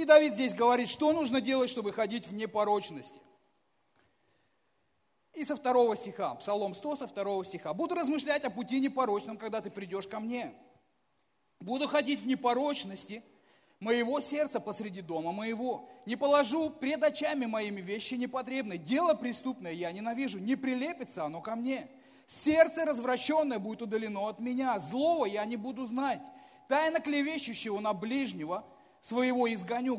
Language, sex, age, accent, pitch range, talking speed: Russian, male, 30-49, native, 220-285 Hz, 140 wpm